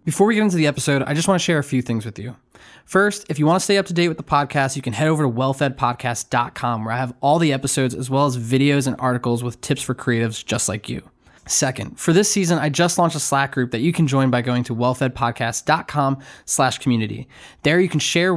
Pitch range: 125-155 Hz